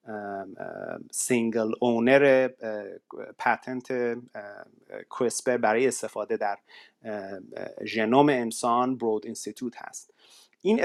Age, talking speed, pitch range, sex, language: 30-49, 70 wpm, 115-155 Hz, male, Persian